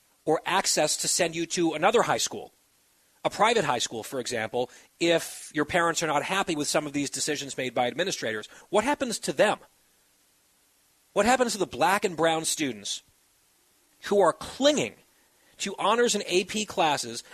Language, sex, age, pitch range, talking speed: English, male, 40-59, 145-190 Hz, 170 wpm